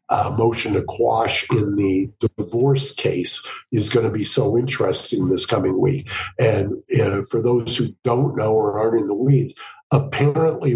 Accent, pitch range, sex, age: American, 110-135 Hz, male, 50-69